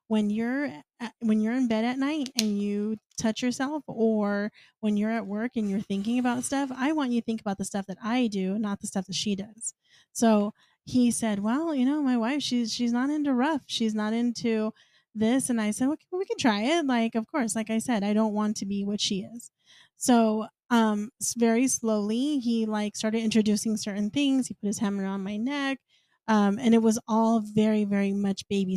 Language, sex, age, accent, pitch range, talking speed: English, female, 20-39, American, 205-245 Hz, 215 wpm